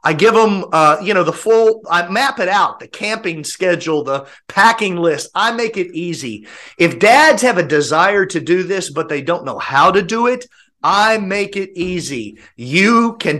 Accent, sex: American, male